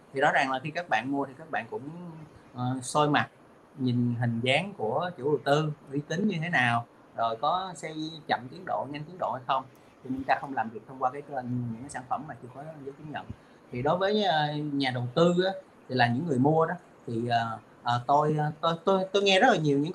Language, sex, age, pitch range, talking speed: Vietnamese, male, 30-49, 125-160 Hz, 255 wpm